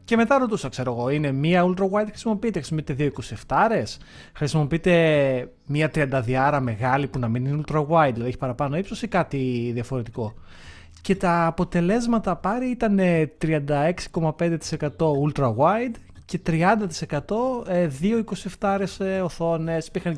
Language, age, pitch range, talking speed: Greek, 30-49, 125-190 Hz, 120 wpm